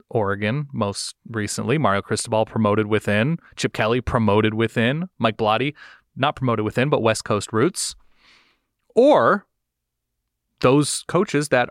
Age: 30-49